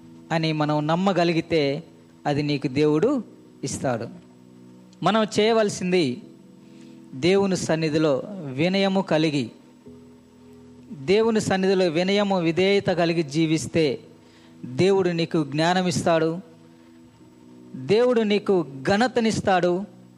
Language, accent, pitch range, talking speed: Telugu, native, 130-195 Hz, 75 wpm